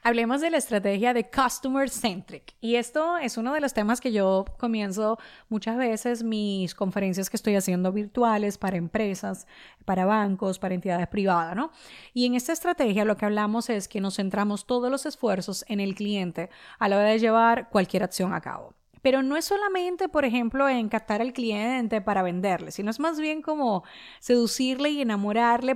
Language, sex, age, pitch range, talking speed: Spanish, female, 30-49, 200-255 Hz, 180 wpm